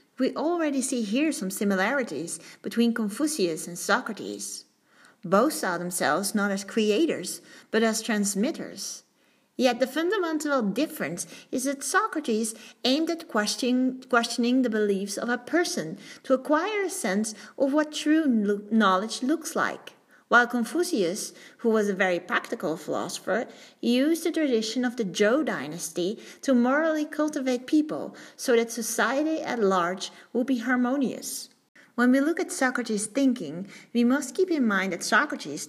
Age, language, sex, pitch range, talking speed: 40-59, English, female, 200-270 Hz, 145 wpm